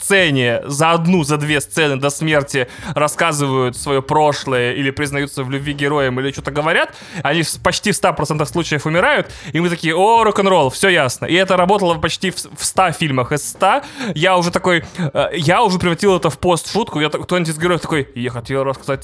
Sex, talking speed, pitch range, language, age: male, 190 wpm, 150-205 Hz, Russian, 20-39